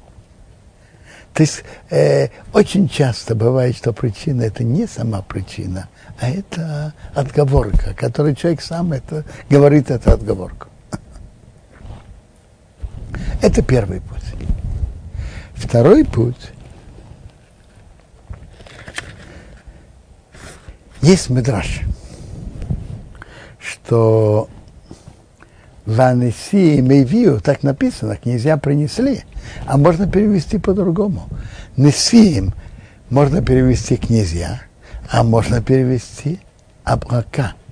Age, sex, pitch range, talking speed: 60-79, male, 105-150 Hz, 75 wpm